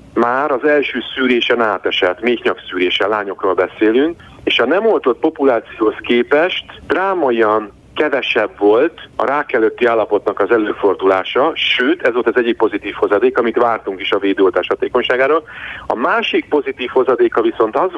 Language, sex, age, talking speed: Hungarian, male, 40-59, 140 wpm